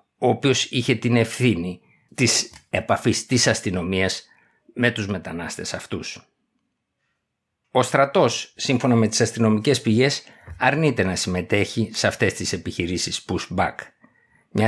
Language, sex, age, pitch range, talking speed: Greek, male, 50-69, 100-120 Hz, 120 wpm